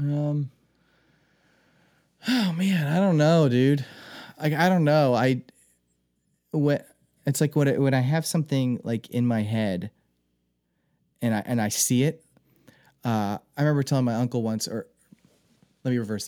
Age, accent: 30-49, American